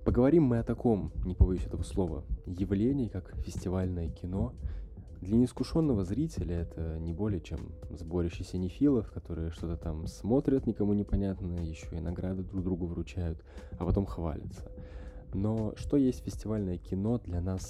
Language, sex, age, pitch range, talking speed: Russian, male, 20-39, 85-105 Hz, 145 wpm